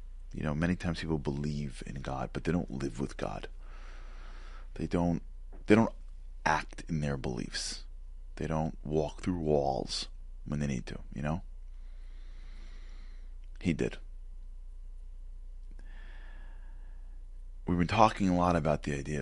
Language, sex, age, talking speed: English, male, 30-49, 135 wpm